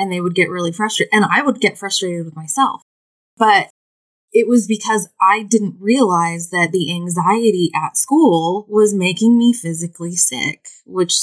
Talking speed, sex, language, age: 165 wpm, female, English, 20-39